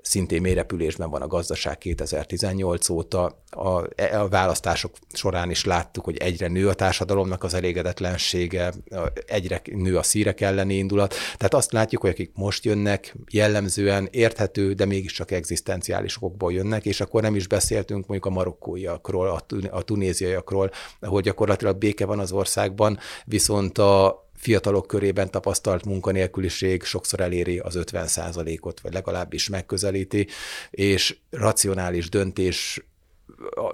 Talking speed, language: 130 wpm, Hungarian